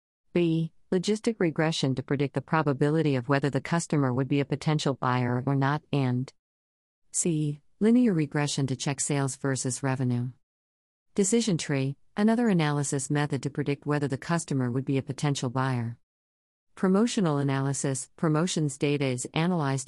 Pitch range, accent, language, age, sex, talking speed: 130-165 Hz, American, English, 40-59, female, 145 wpm